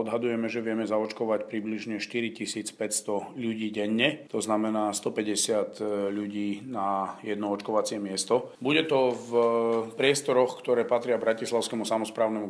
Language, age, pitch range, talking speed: Slovak, 40-59, 105-115 Hz, 115 wpm